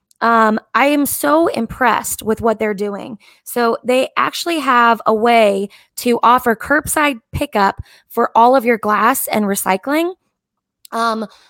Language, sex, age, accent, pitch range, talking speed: English, female, 10-29, American, 210-255 Hz, 140 wpm